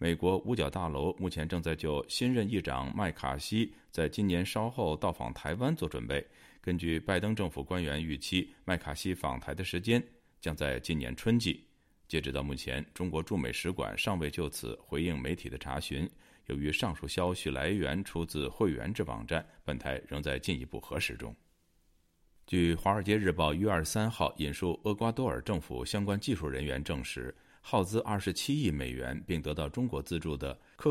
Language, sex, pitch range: Chinese, male, 70-95 Hz